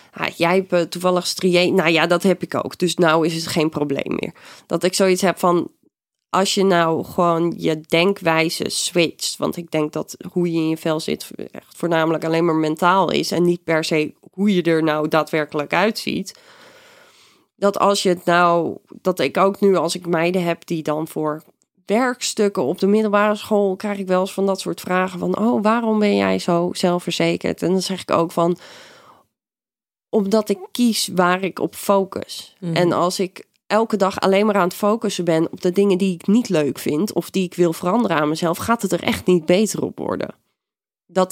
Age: 20-39